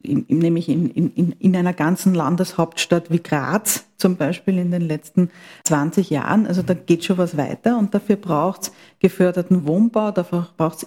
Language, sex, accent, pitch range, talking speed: German, female, Austrian, 165-205 Hz, 170 wpm